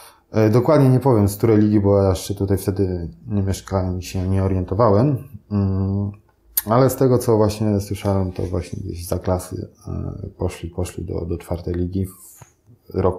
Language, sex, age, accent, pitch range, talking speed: Polish, male, 20-39, native, 95-105 Hz, 160 wpm